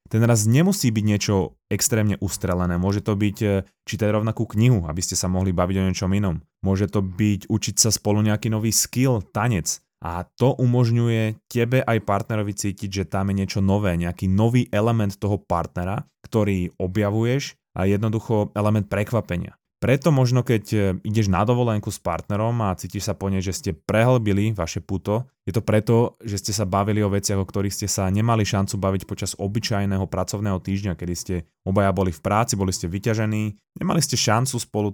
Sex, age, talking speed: male, 20-39, 180 wpm